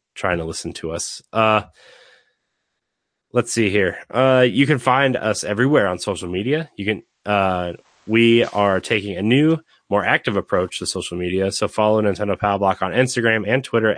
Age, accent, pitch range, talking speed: 30-49, American, 95-125 Hz, 175 wpm